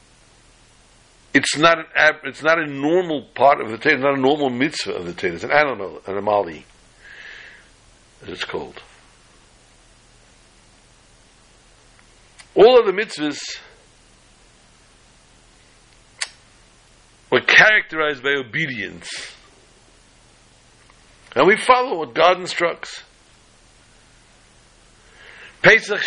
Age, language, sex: 60-79, English, male